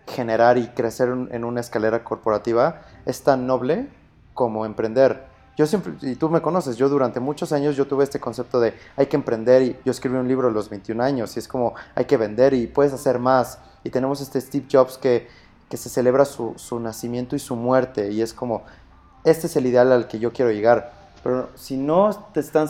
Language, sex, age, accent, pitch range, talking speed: Spanish, male, 30-49, Mexican, 120-145 Hz, 215 wpm